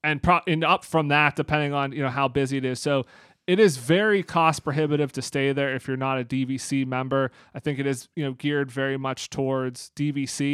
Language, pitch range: English, 135-155 Hz